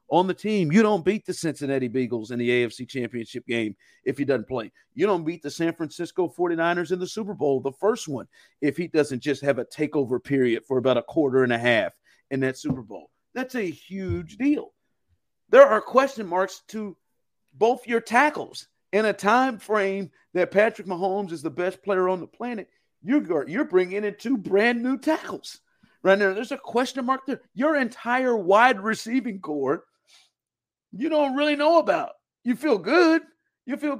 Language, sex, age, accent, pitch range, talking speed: English, male, 50-69, American, 160-245 Hz, 185 wpm